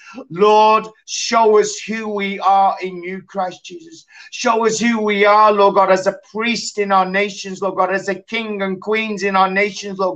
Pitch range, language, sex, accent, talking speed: 195-220 Hz, English, male, British, 200 wpm